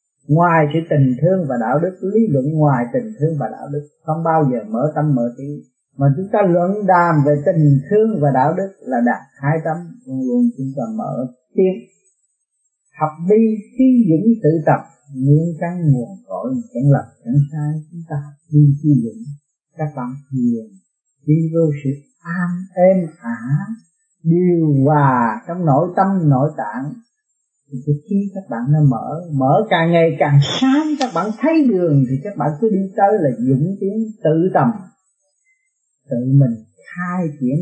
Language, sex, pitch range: Vietnamese, male, 145-220 Hz